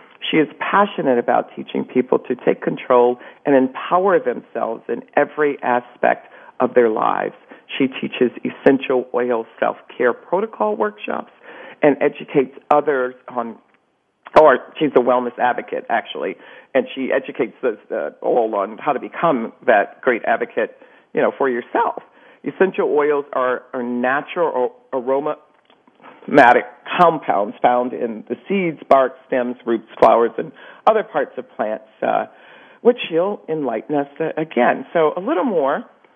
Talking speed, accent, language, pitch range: 135 wpm, American, English, 120-150 Hz